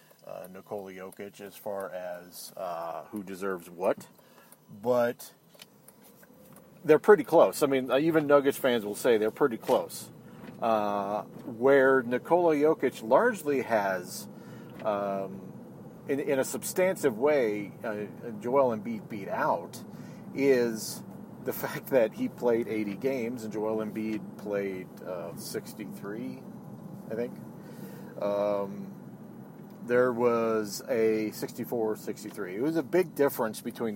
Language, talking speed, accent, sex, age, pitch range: English, 120 wpm, American, male, 40-59, 105-145 Hz